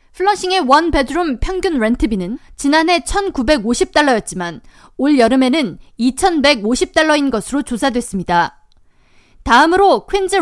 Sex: female